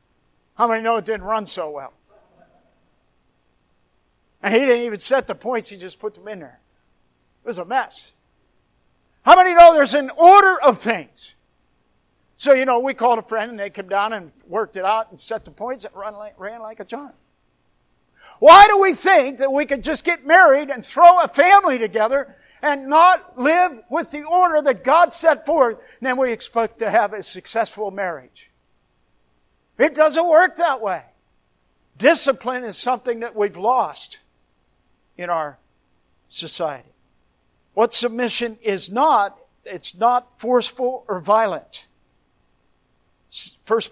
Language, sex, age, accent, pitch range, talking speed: English, male, 50-69, American, 200-270 Hz, 155 wpm